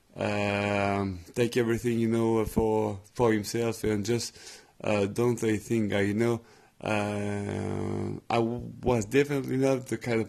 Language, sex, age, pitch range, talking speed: English, male, 20-39, 105-120 Hz, 145 wpm